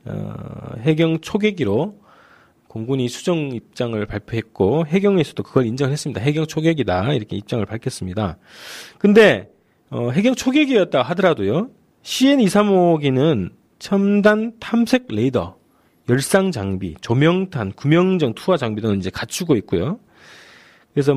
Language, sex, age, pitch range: Korean, male, 40-59, 110-165 Hz